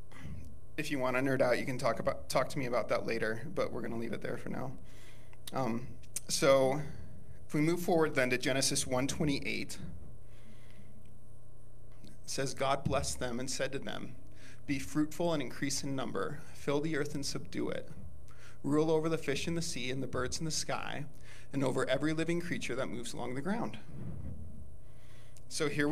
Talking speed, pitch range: 190 wpm, 120-150 Hz